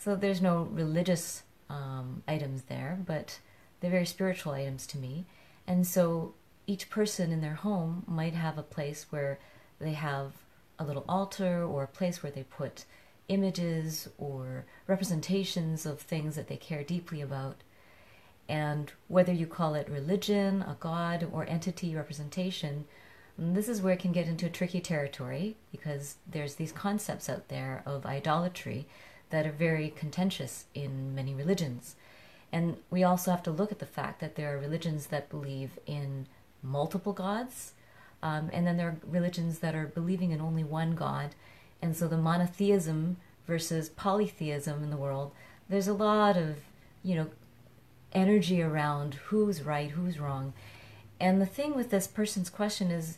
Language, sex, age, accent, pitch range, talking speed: English, female, 40-59, American, 145-180 Hz, 160 wpm